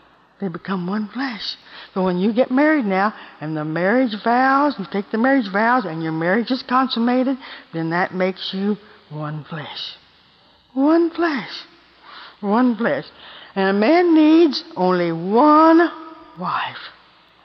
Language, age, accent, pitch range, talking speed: English, 60-79, American, 185-285 Hz, 140 wpm